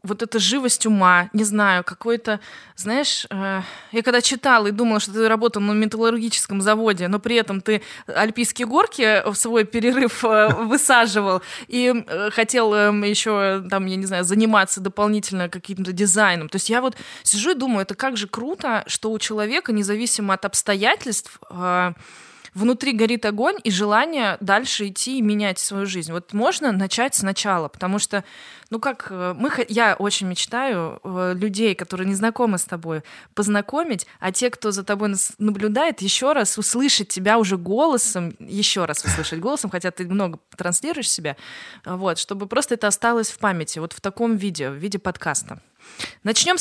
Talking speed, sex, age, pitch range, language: 165 wpm, female, 20-39, 195-235 Hz, Russian